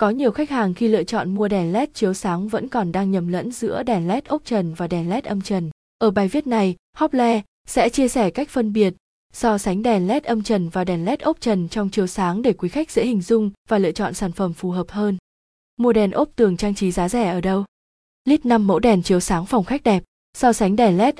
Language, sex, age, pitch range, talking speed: Vietnamese, female, 20-39, 185-230 Hz, 250 wpm